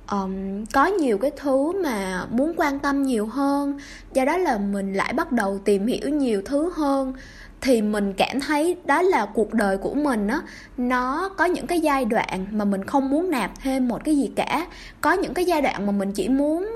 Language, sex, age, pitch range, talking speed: Vietnamese, female, 20-39, 210-305 Hz, 205 wpm